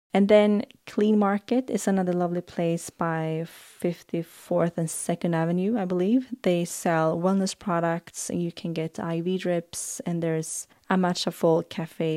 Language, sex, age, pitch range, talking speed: English, female, 20-39, 160-190 Hz, 150 wpm